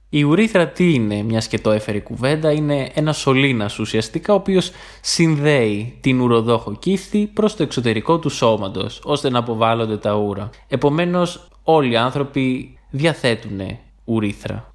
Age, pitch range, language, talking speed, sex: 20-39, 115-165 Hz, Greek, 140 wpm, male